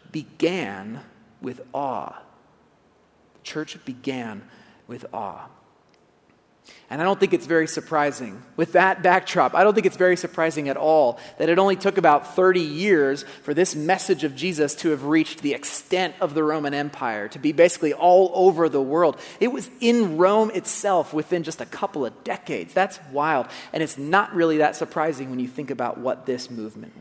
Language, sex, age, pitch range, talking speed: English, male, 30-49, 150-190 Hz, 180 wpm